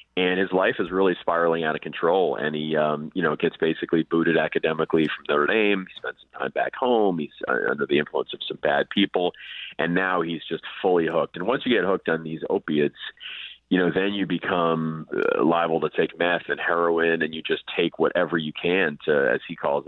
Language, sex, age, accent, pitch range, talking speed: English, male, 30-49, American, 80-95 Hz, 215 wpm